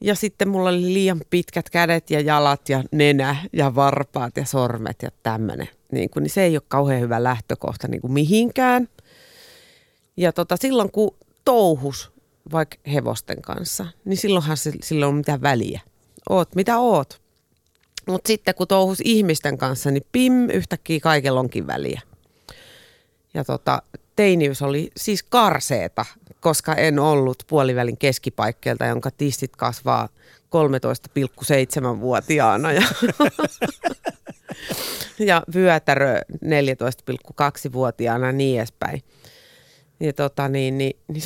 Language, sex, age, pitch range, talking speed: Finnish, female, 30-49, 135-190 Hz, 120 wpm